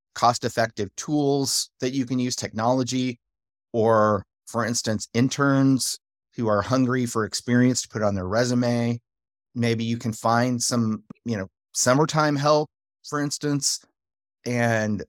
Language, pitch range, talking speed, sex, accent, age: English, 100-125 Hz, 130 wpm, male, American, 30-49